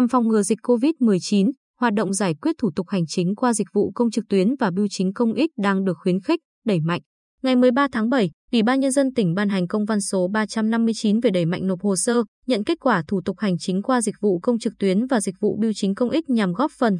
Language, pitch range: Vietnamese, 190-250 Hz